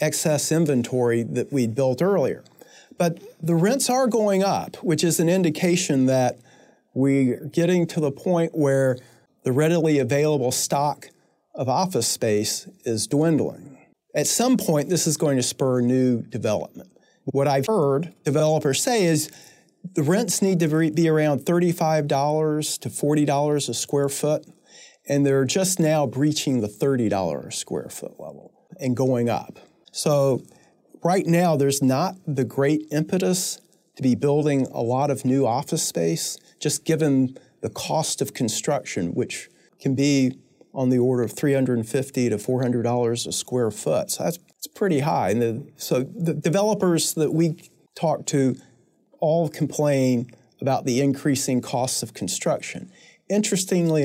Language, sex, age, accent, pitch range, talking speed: English, male, 40-59, American, 130-165 Hz, 150 wpm